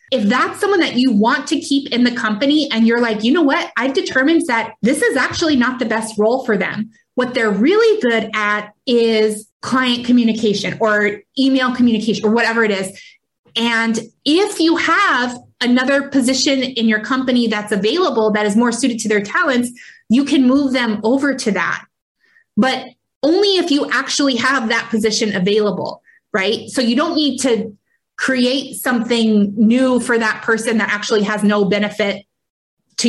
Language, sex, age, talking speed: English, female, 20-39, 175 wpm